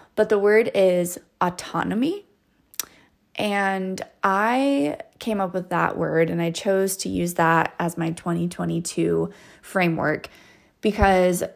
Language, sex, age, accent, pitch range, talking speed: English, female, 20-39, American, 170-210 Hz, 120 wpm